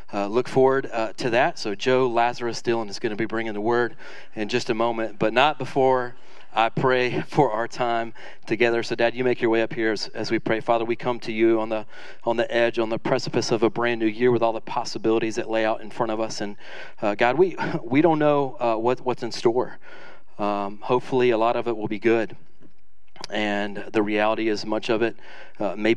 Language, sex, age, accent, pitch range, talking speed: English, male, 40-59, American, 105-125 Hz, 235 wpm